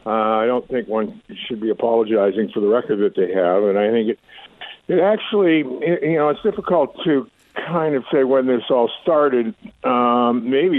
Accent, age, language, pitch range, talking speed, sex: American, 50-69, English, 105-125 Hz, 190 wpm, male